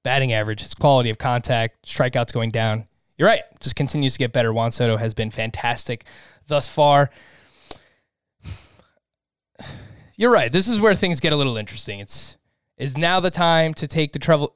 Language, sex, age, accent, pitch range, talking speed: English, male, 20-39, American, 120-155 Hz, 175 wpm